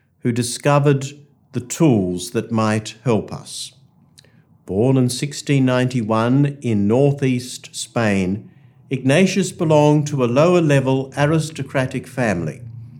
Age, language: 60-79, English